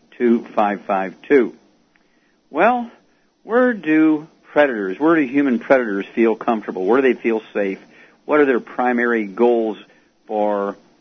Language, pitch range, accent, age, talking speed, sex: English, 110-140 Hz, American, 60-79, 135 wpm, male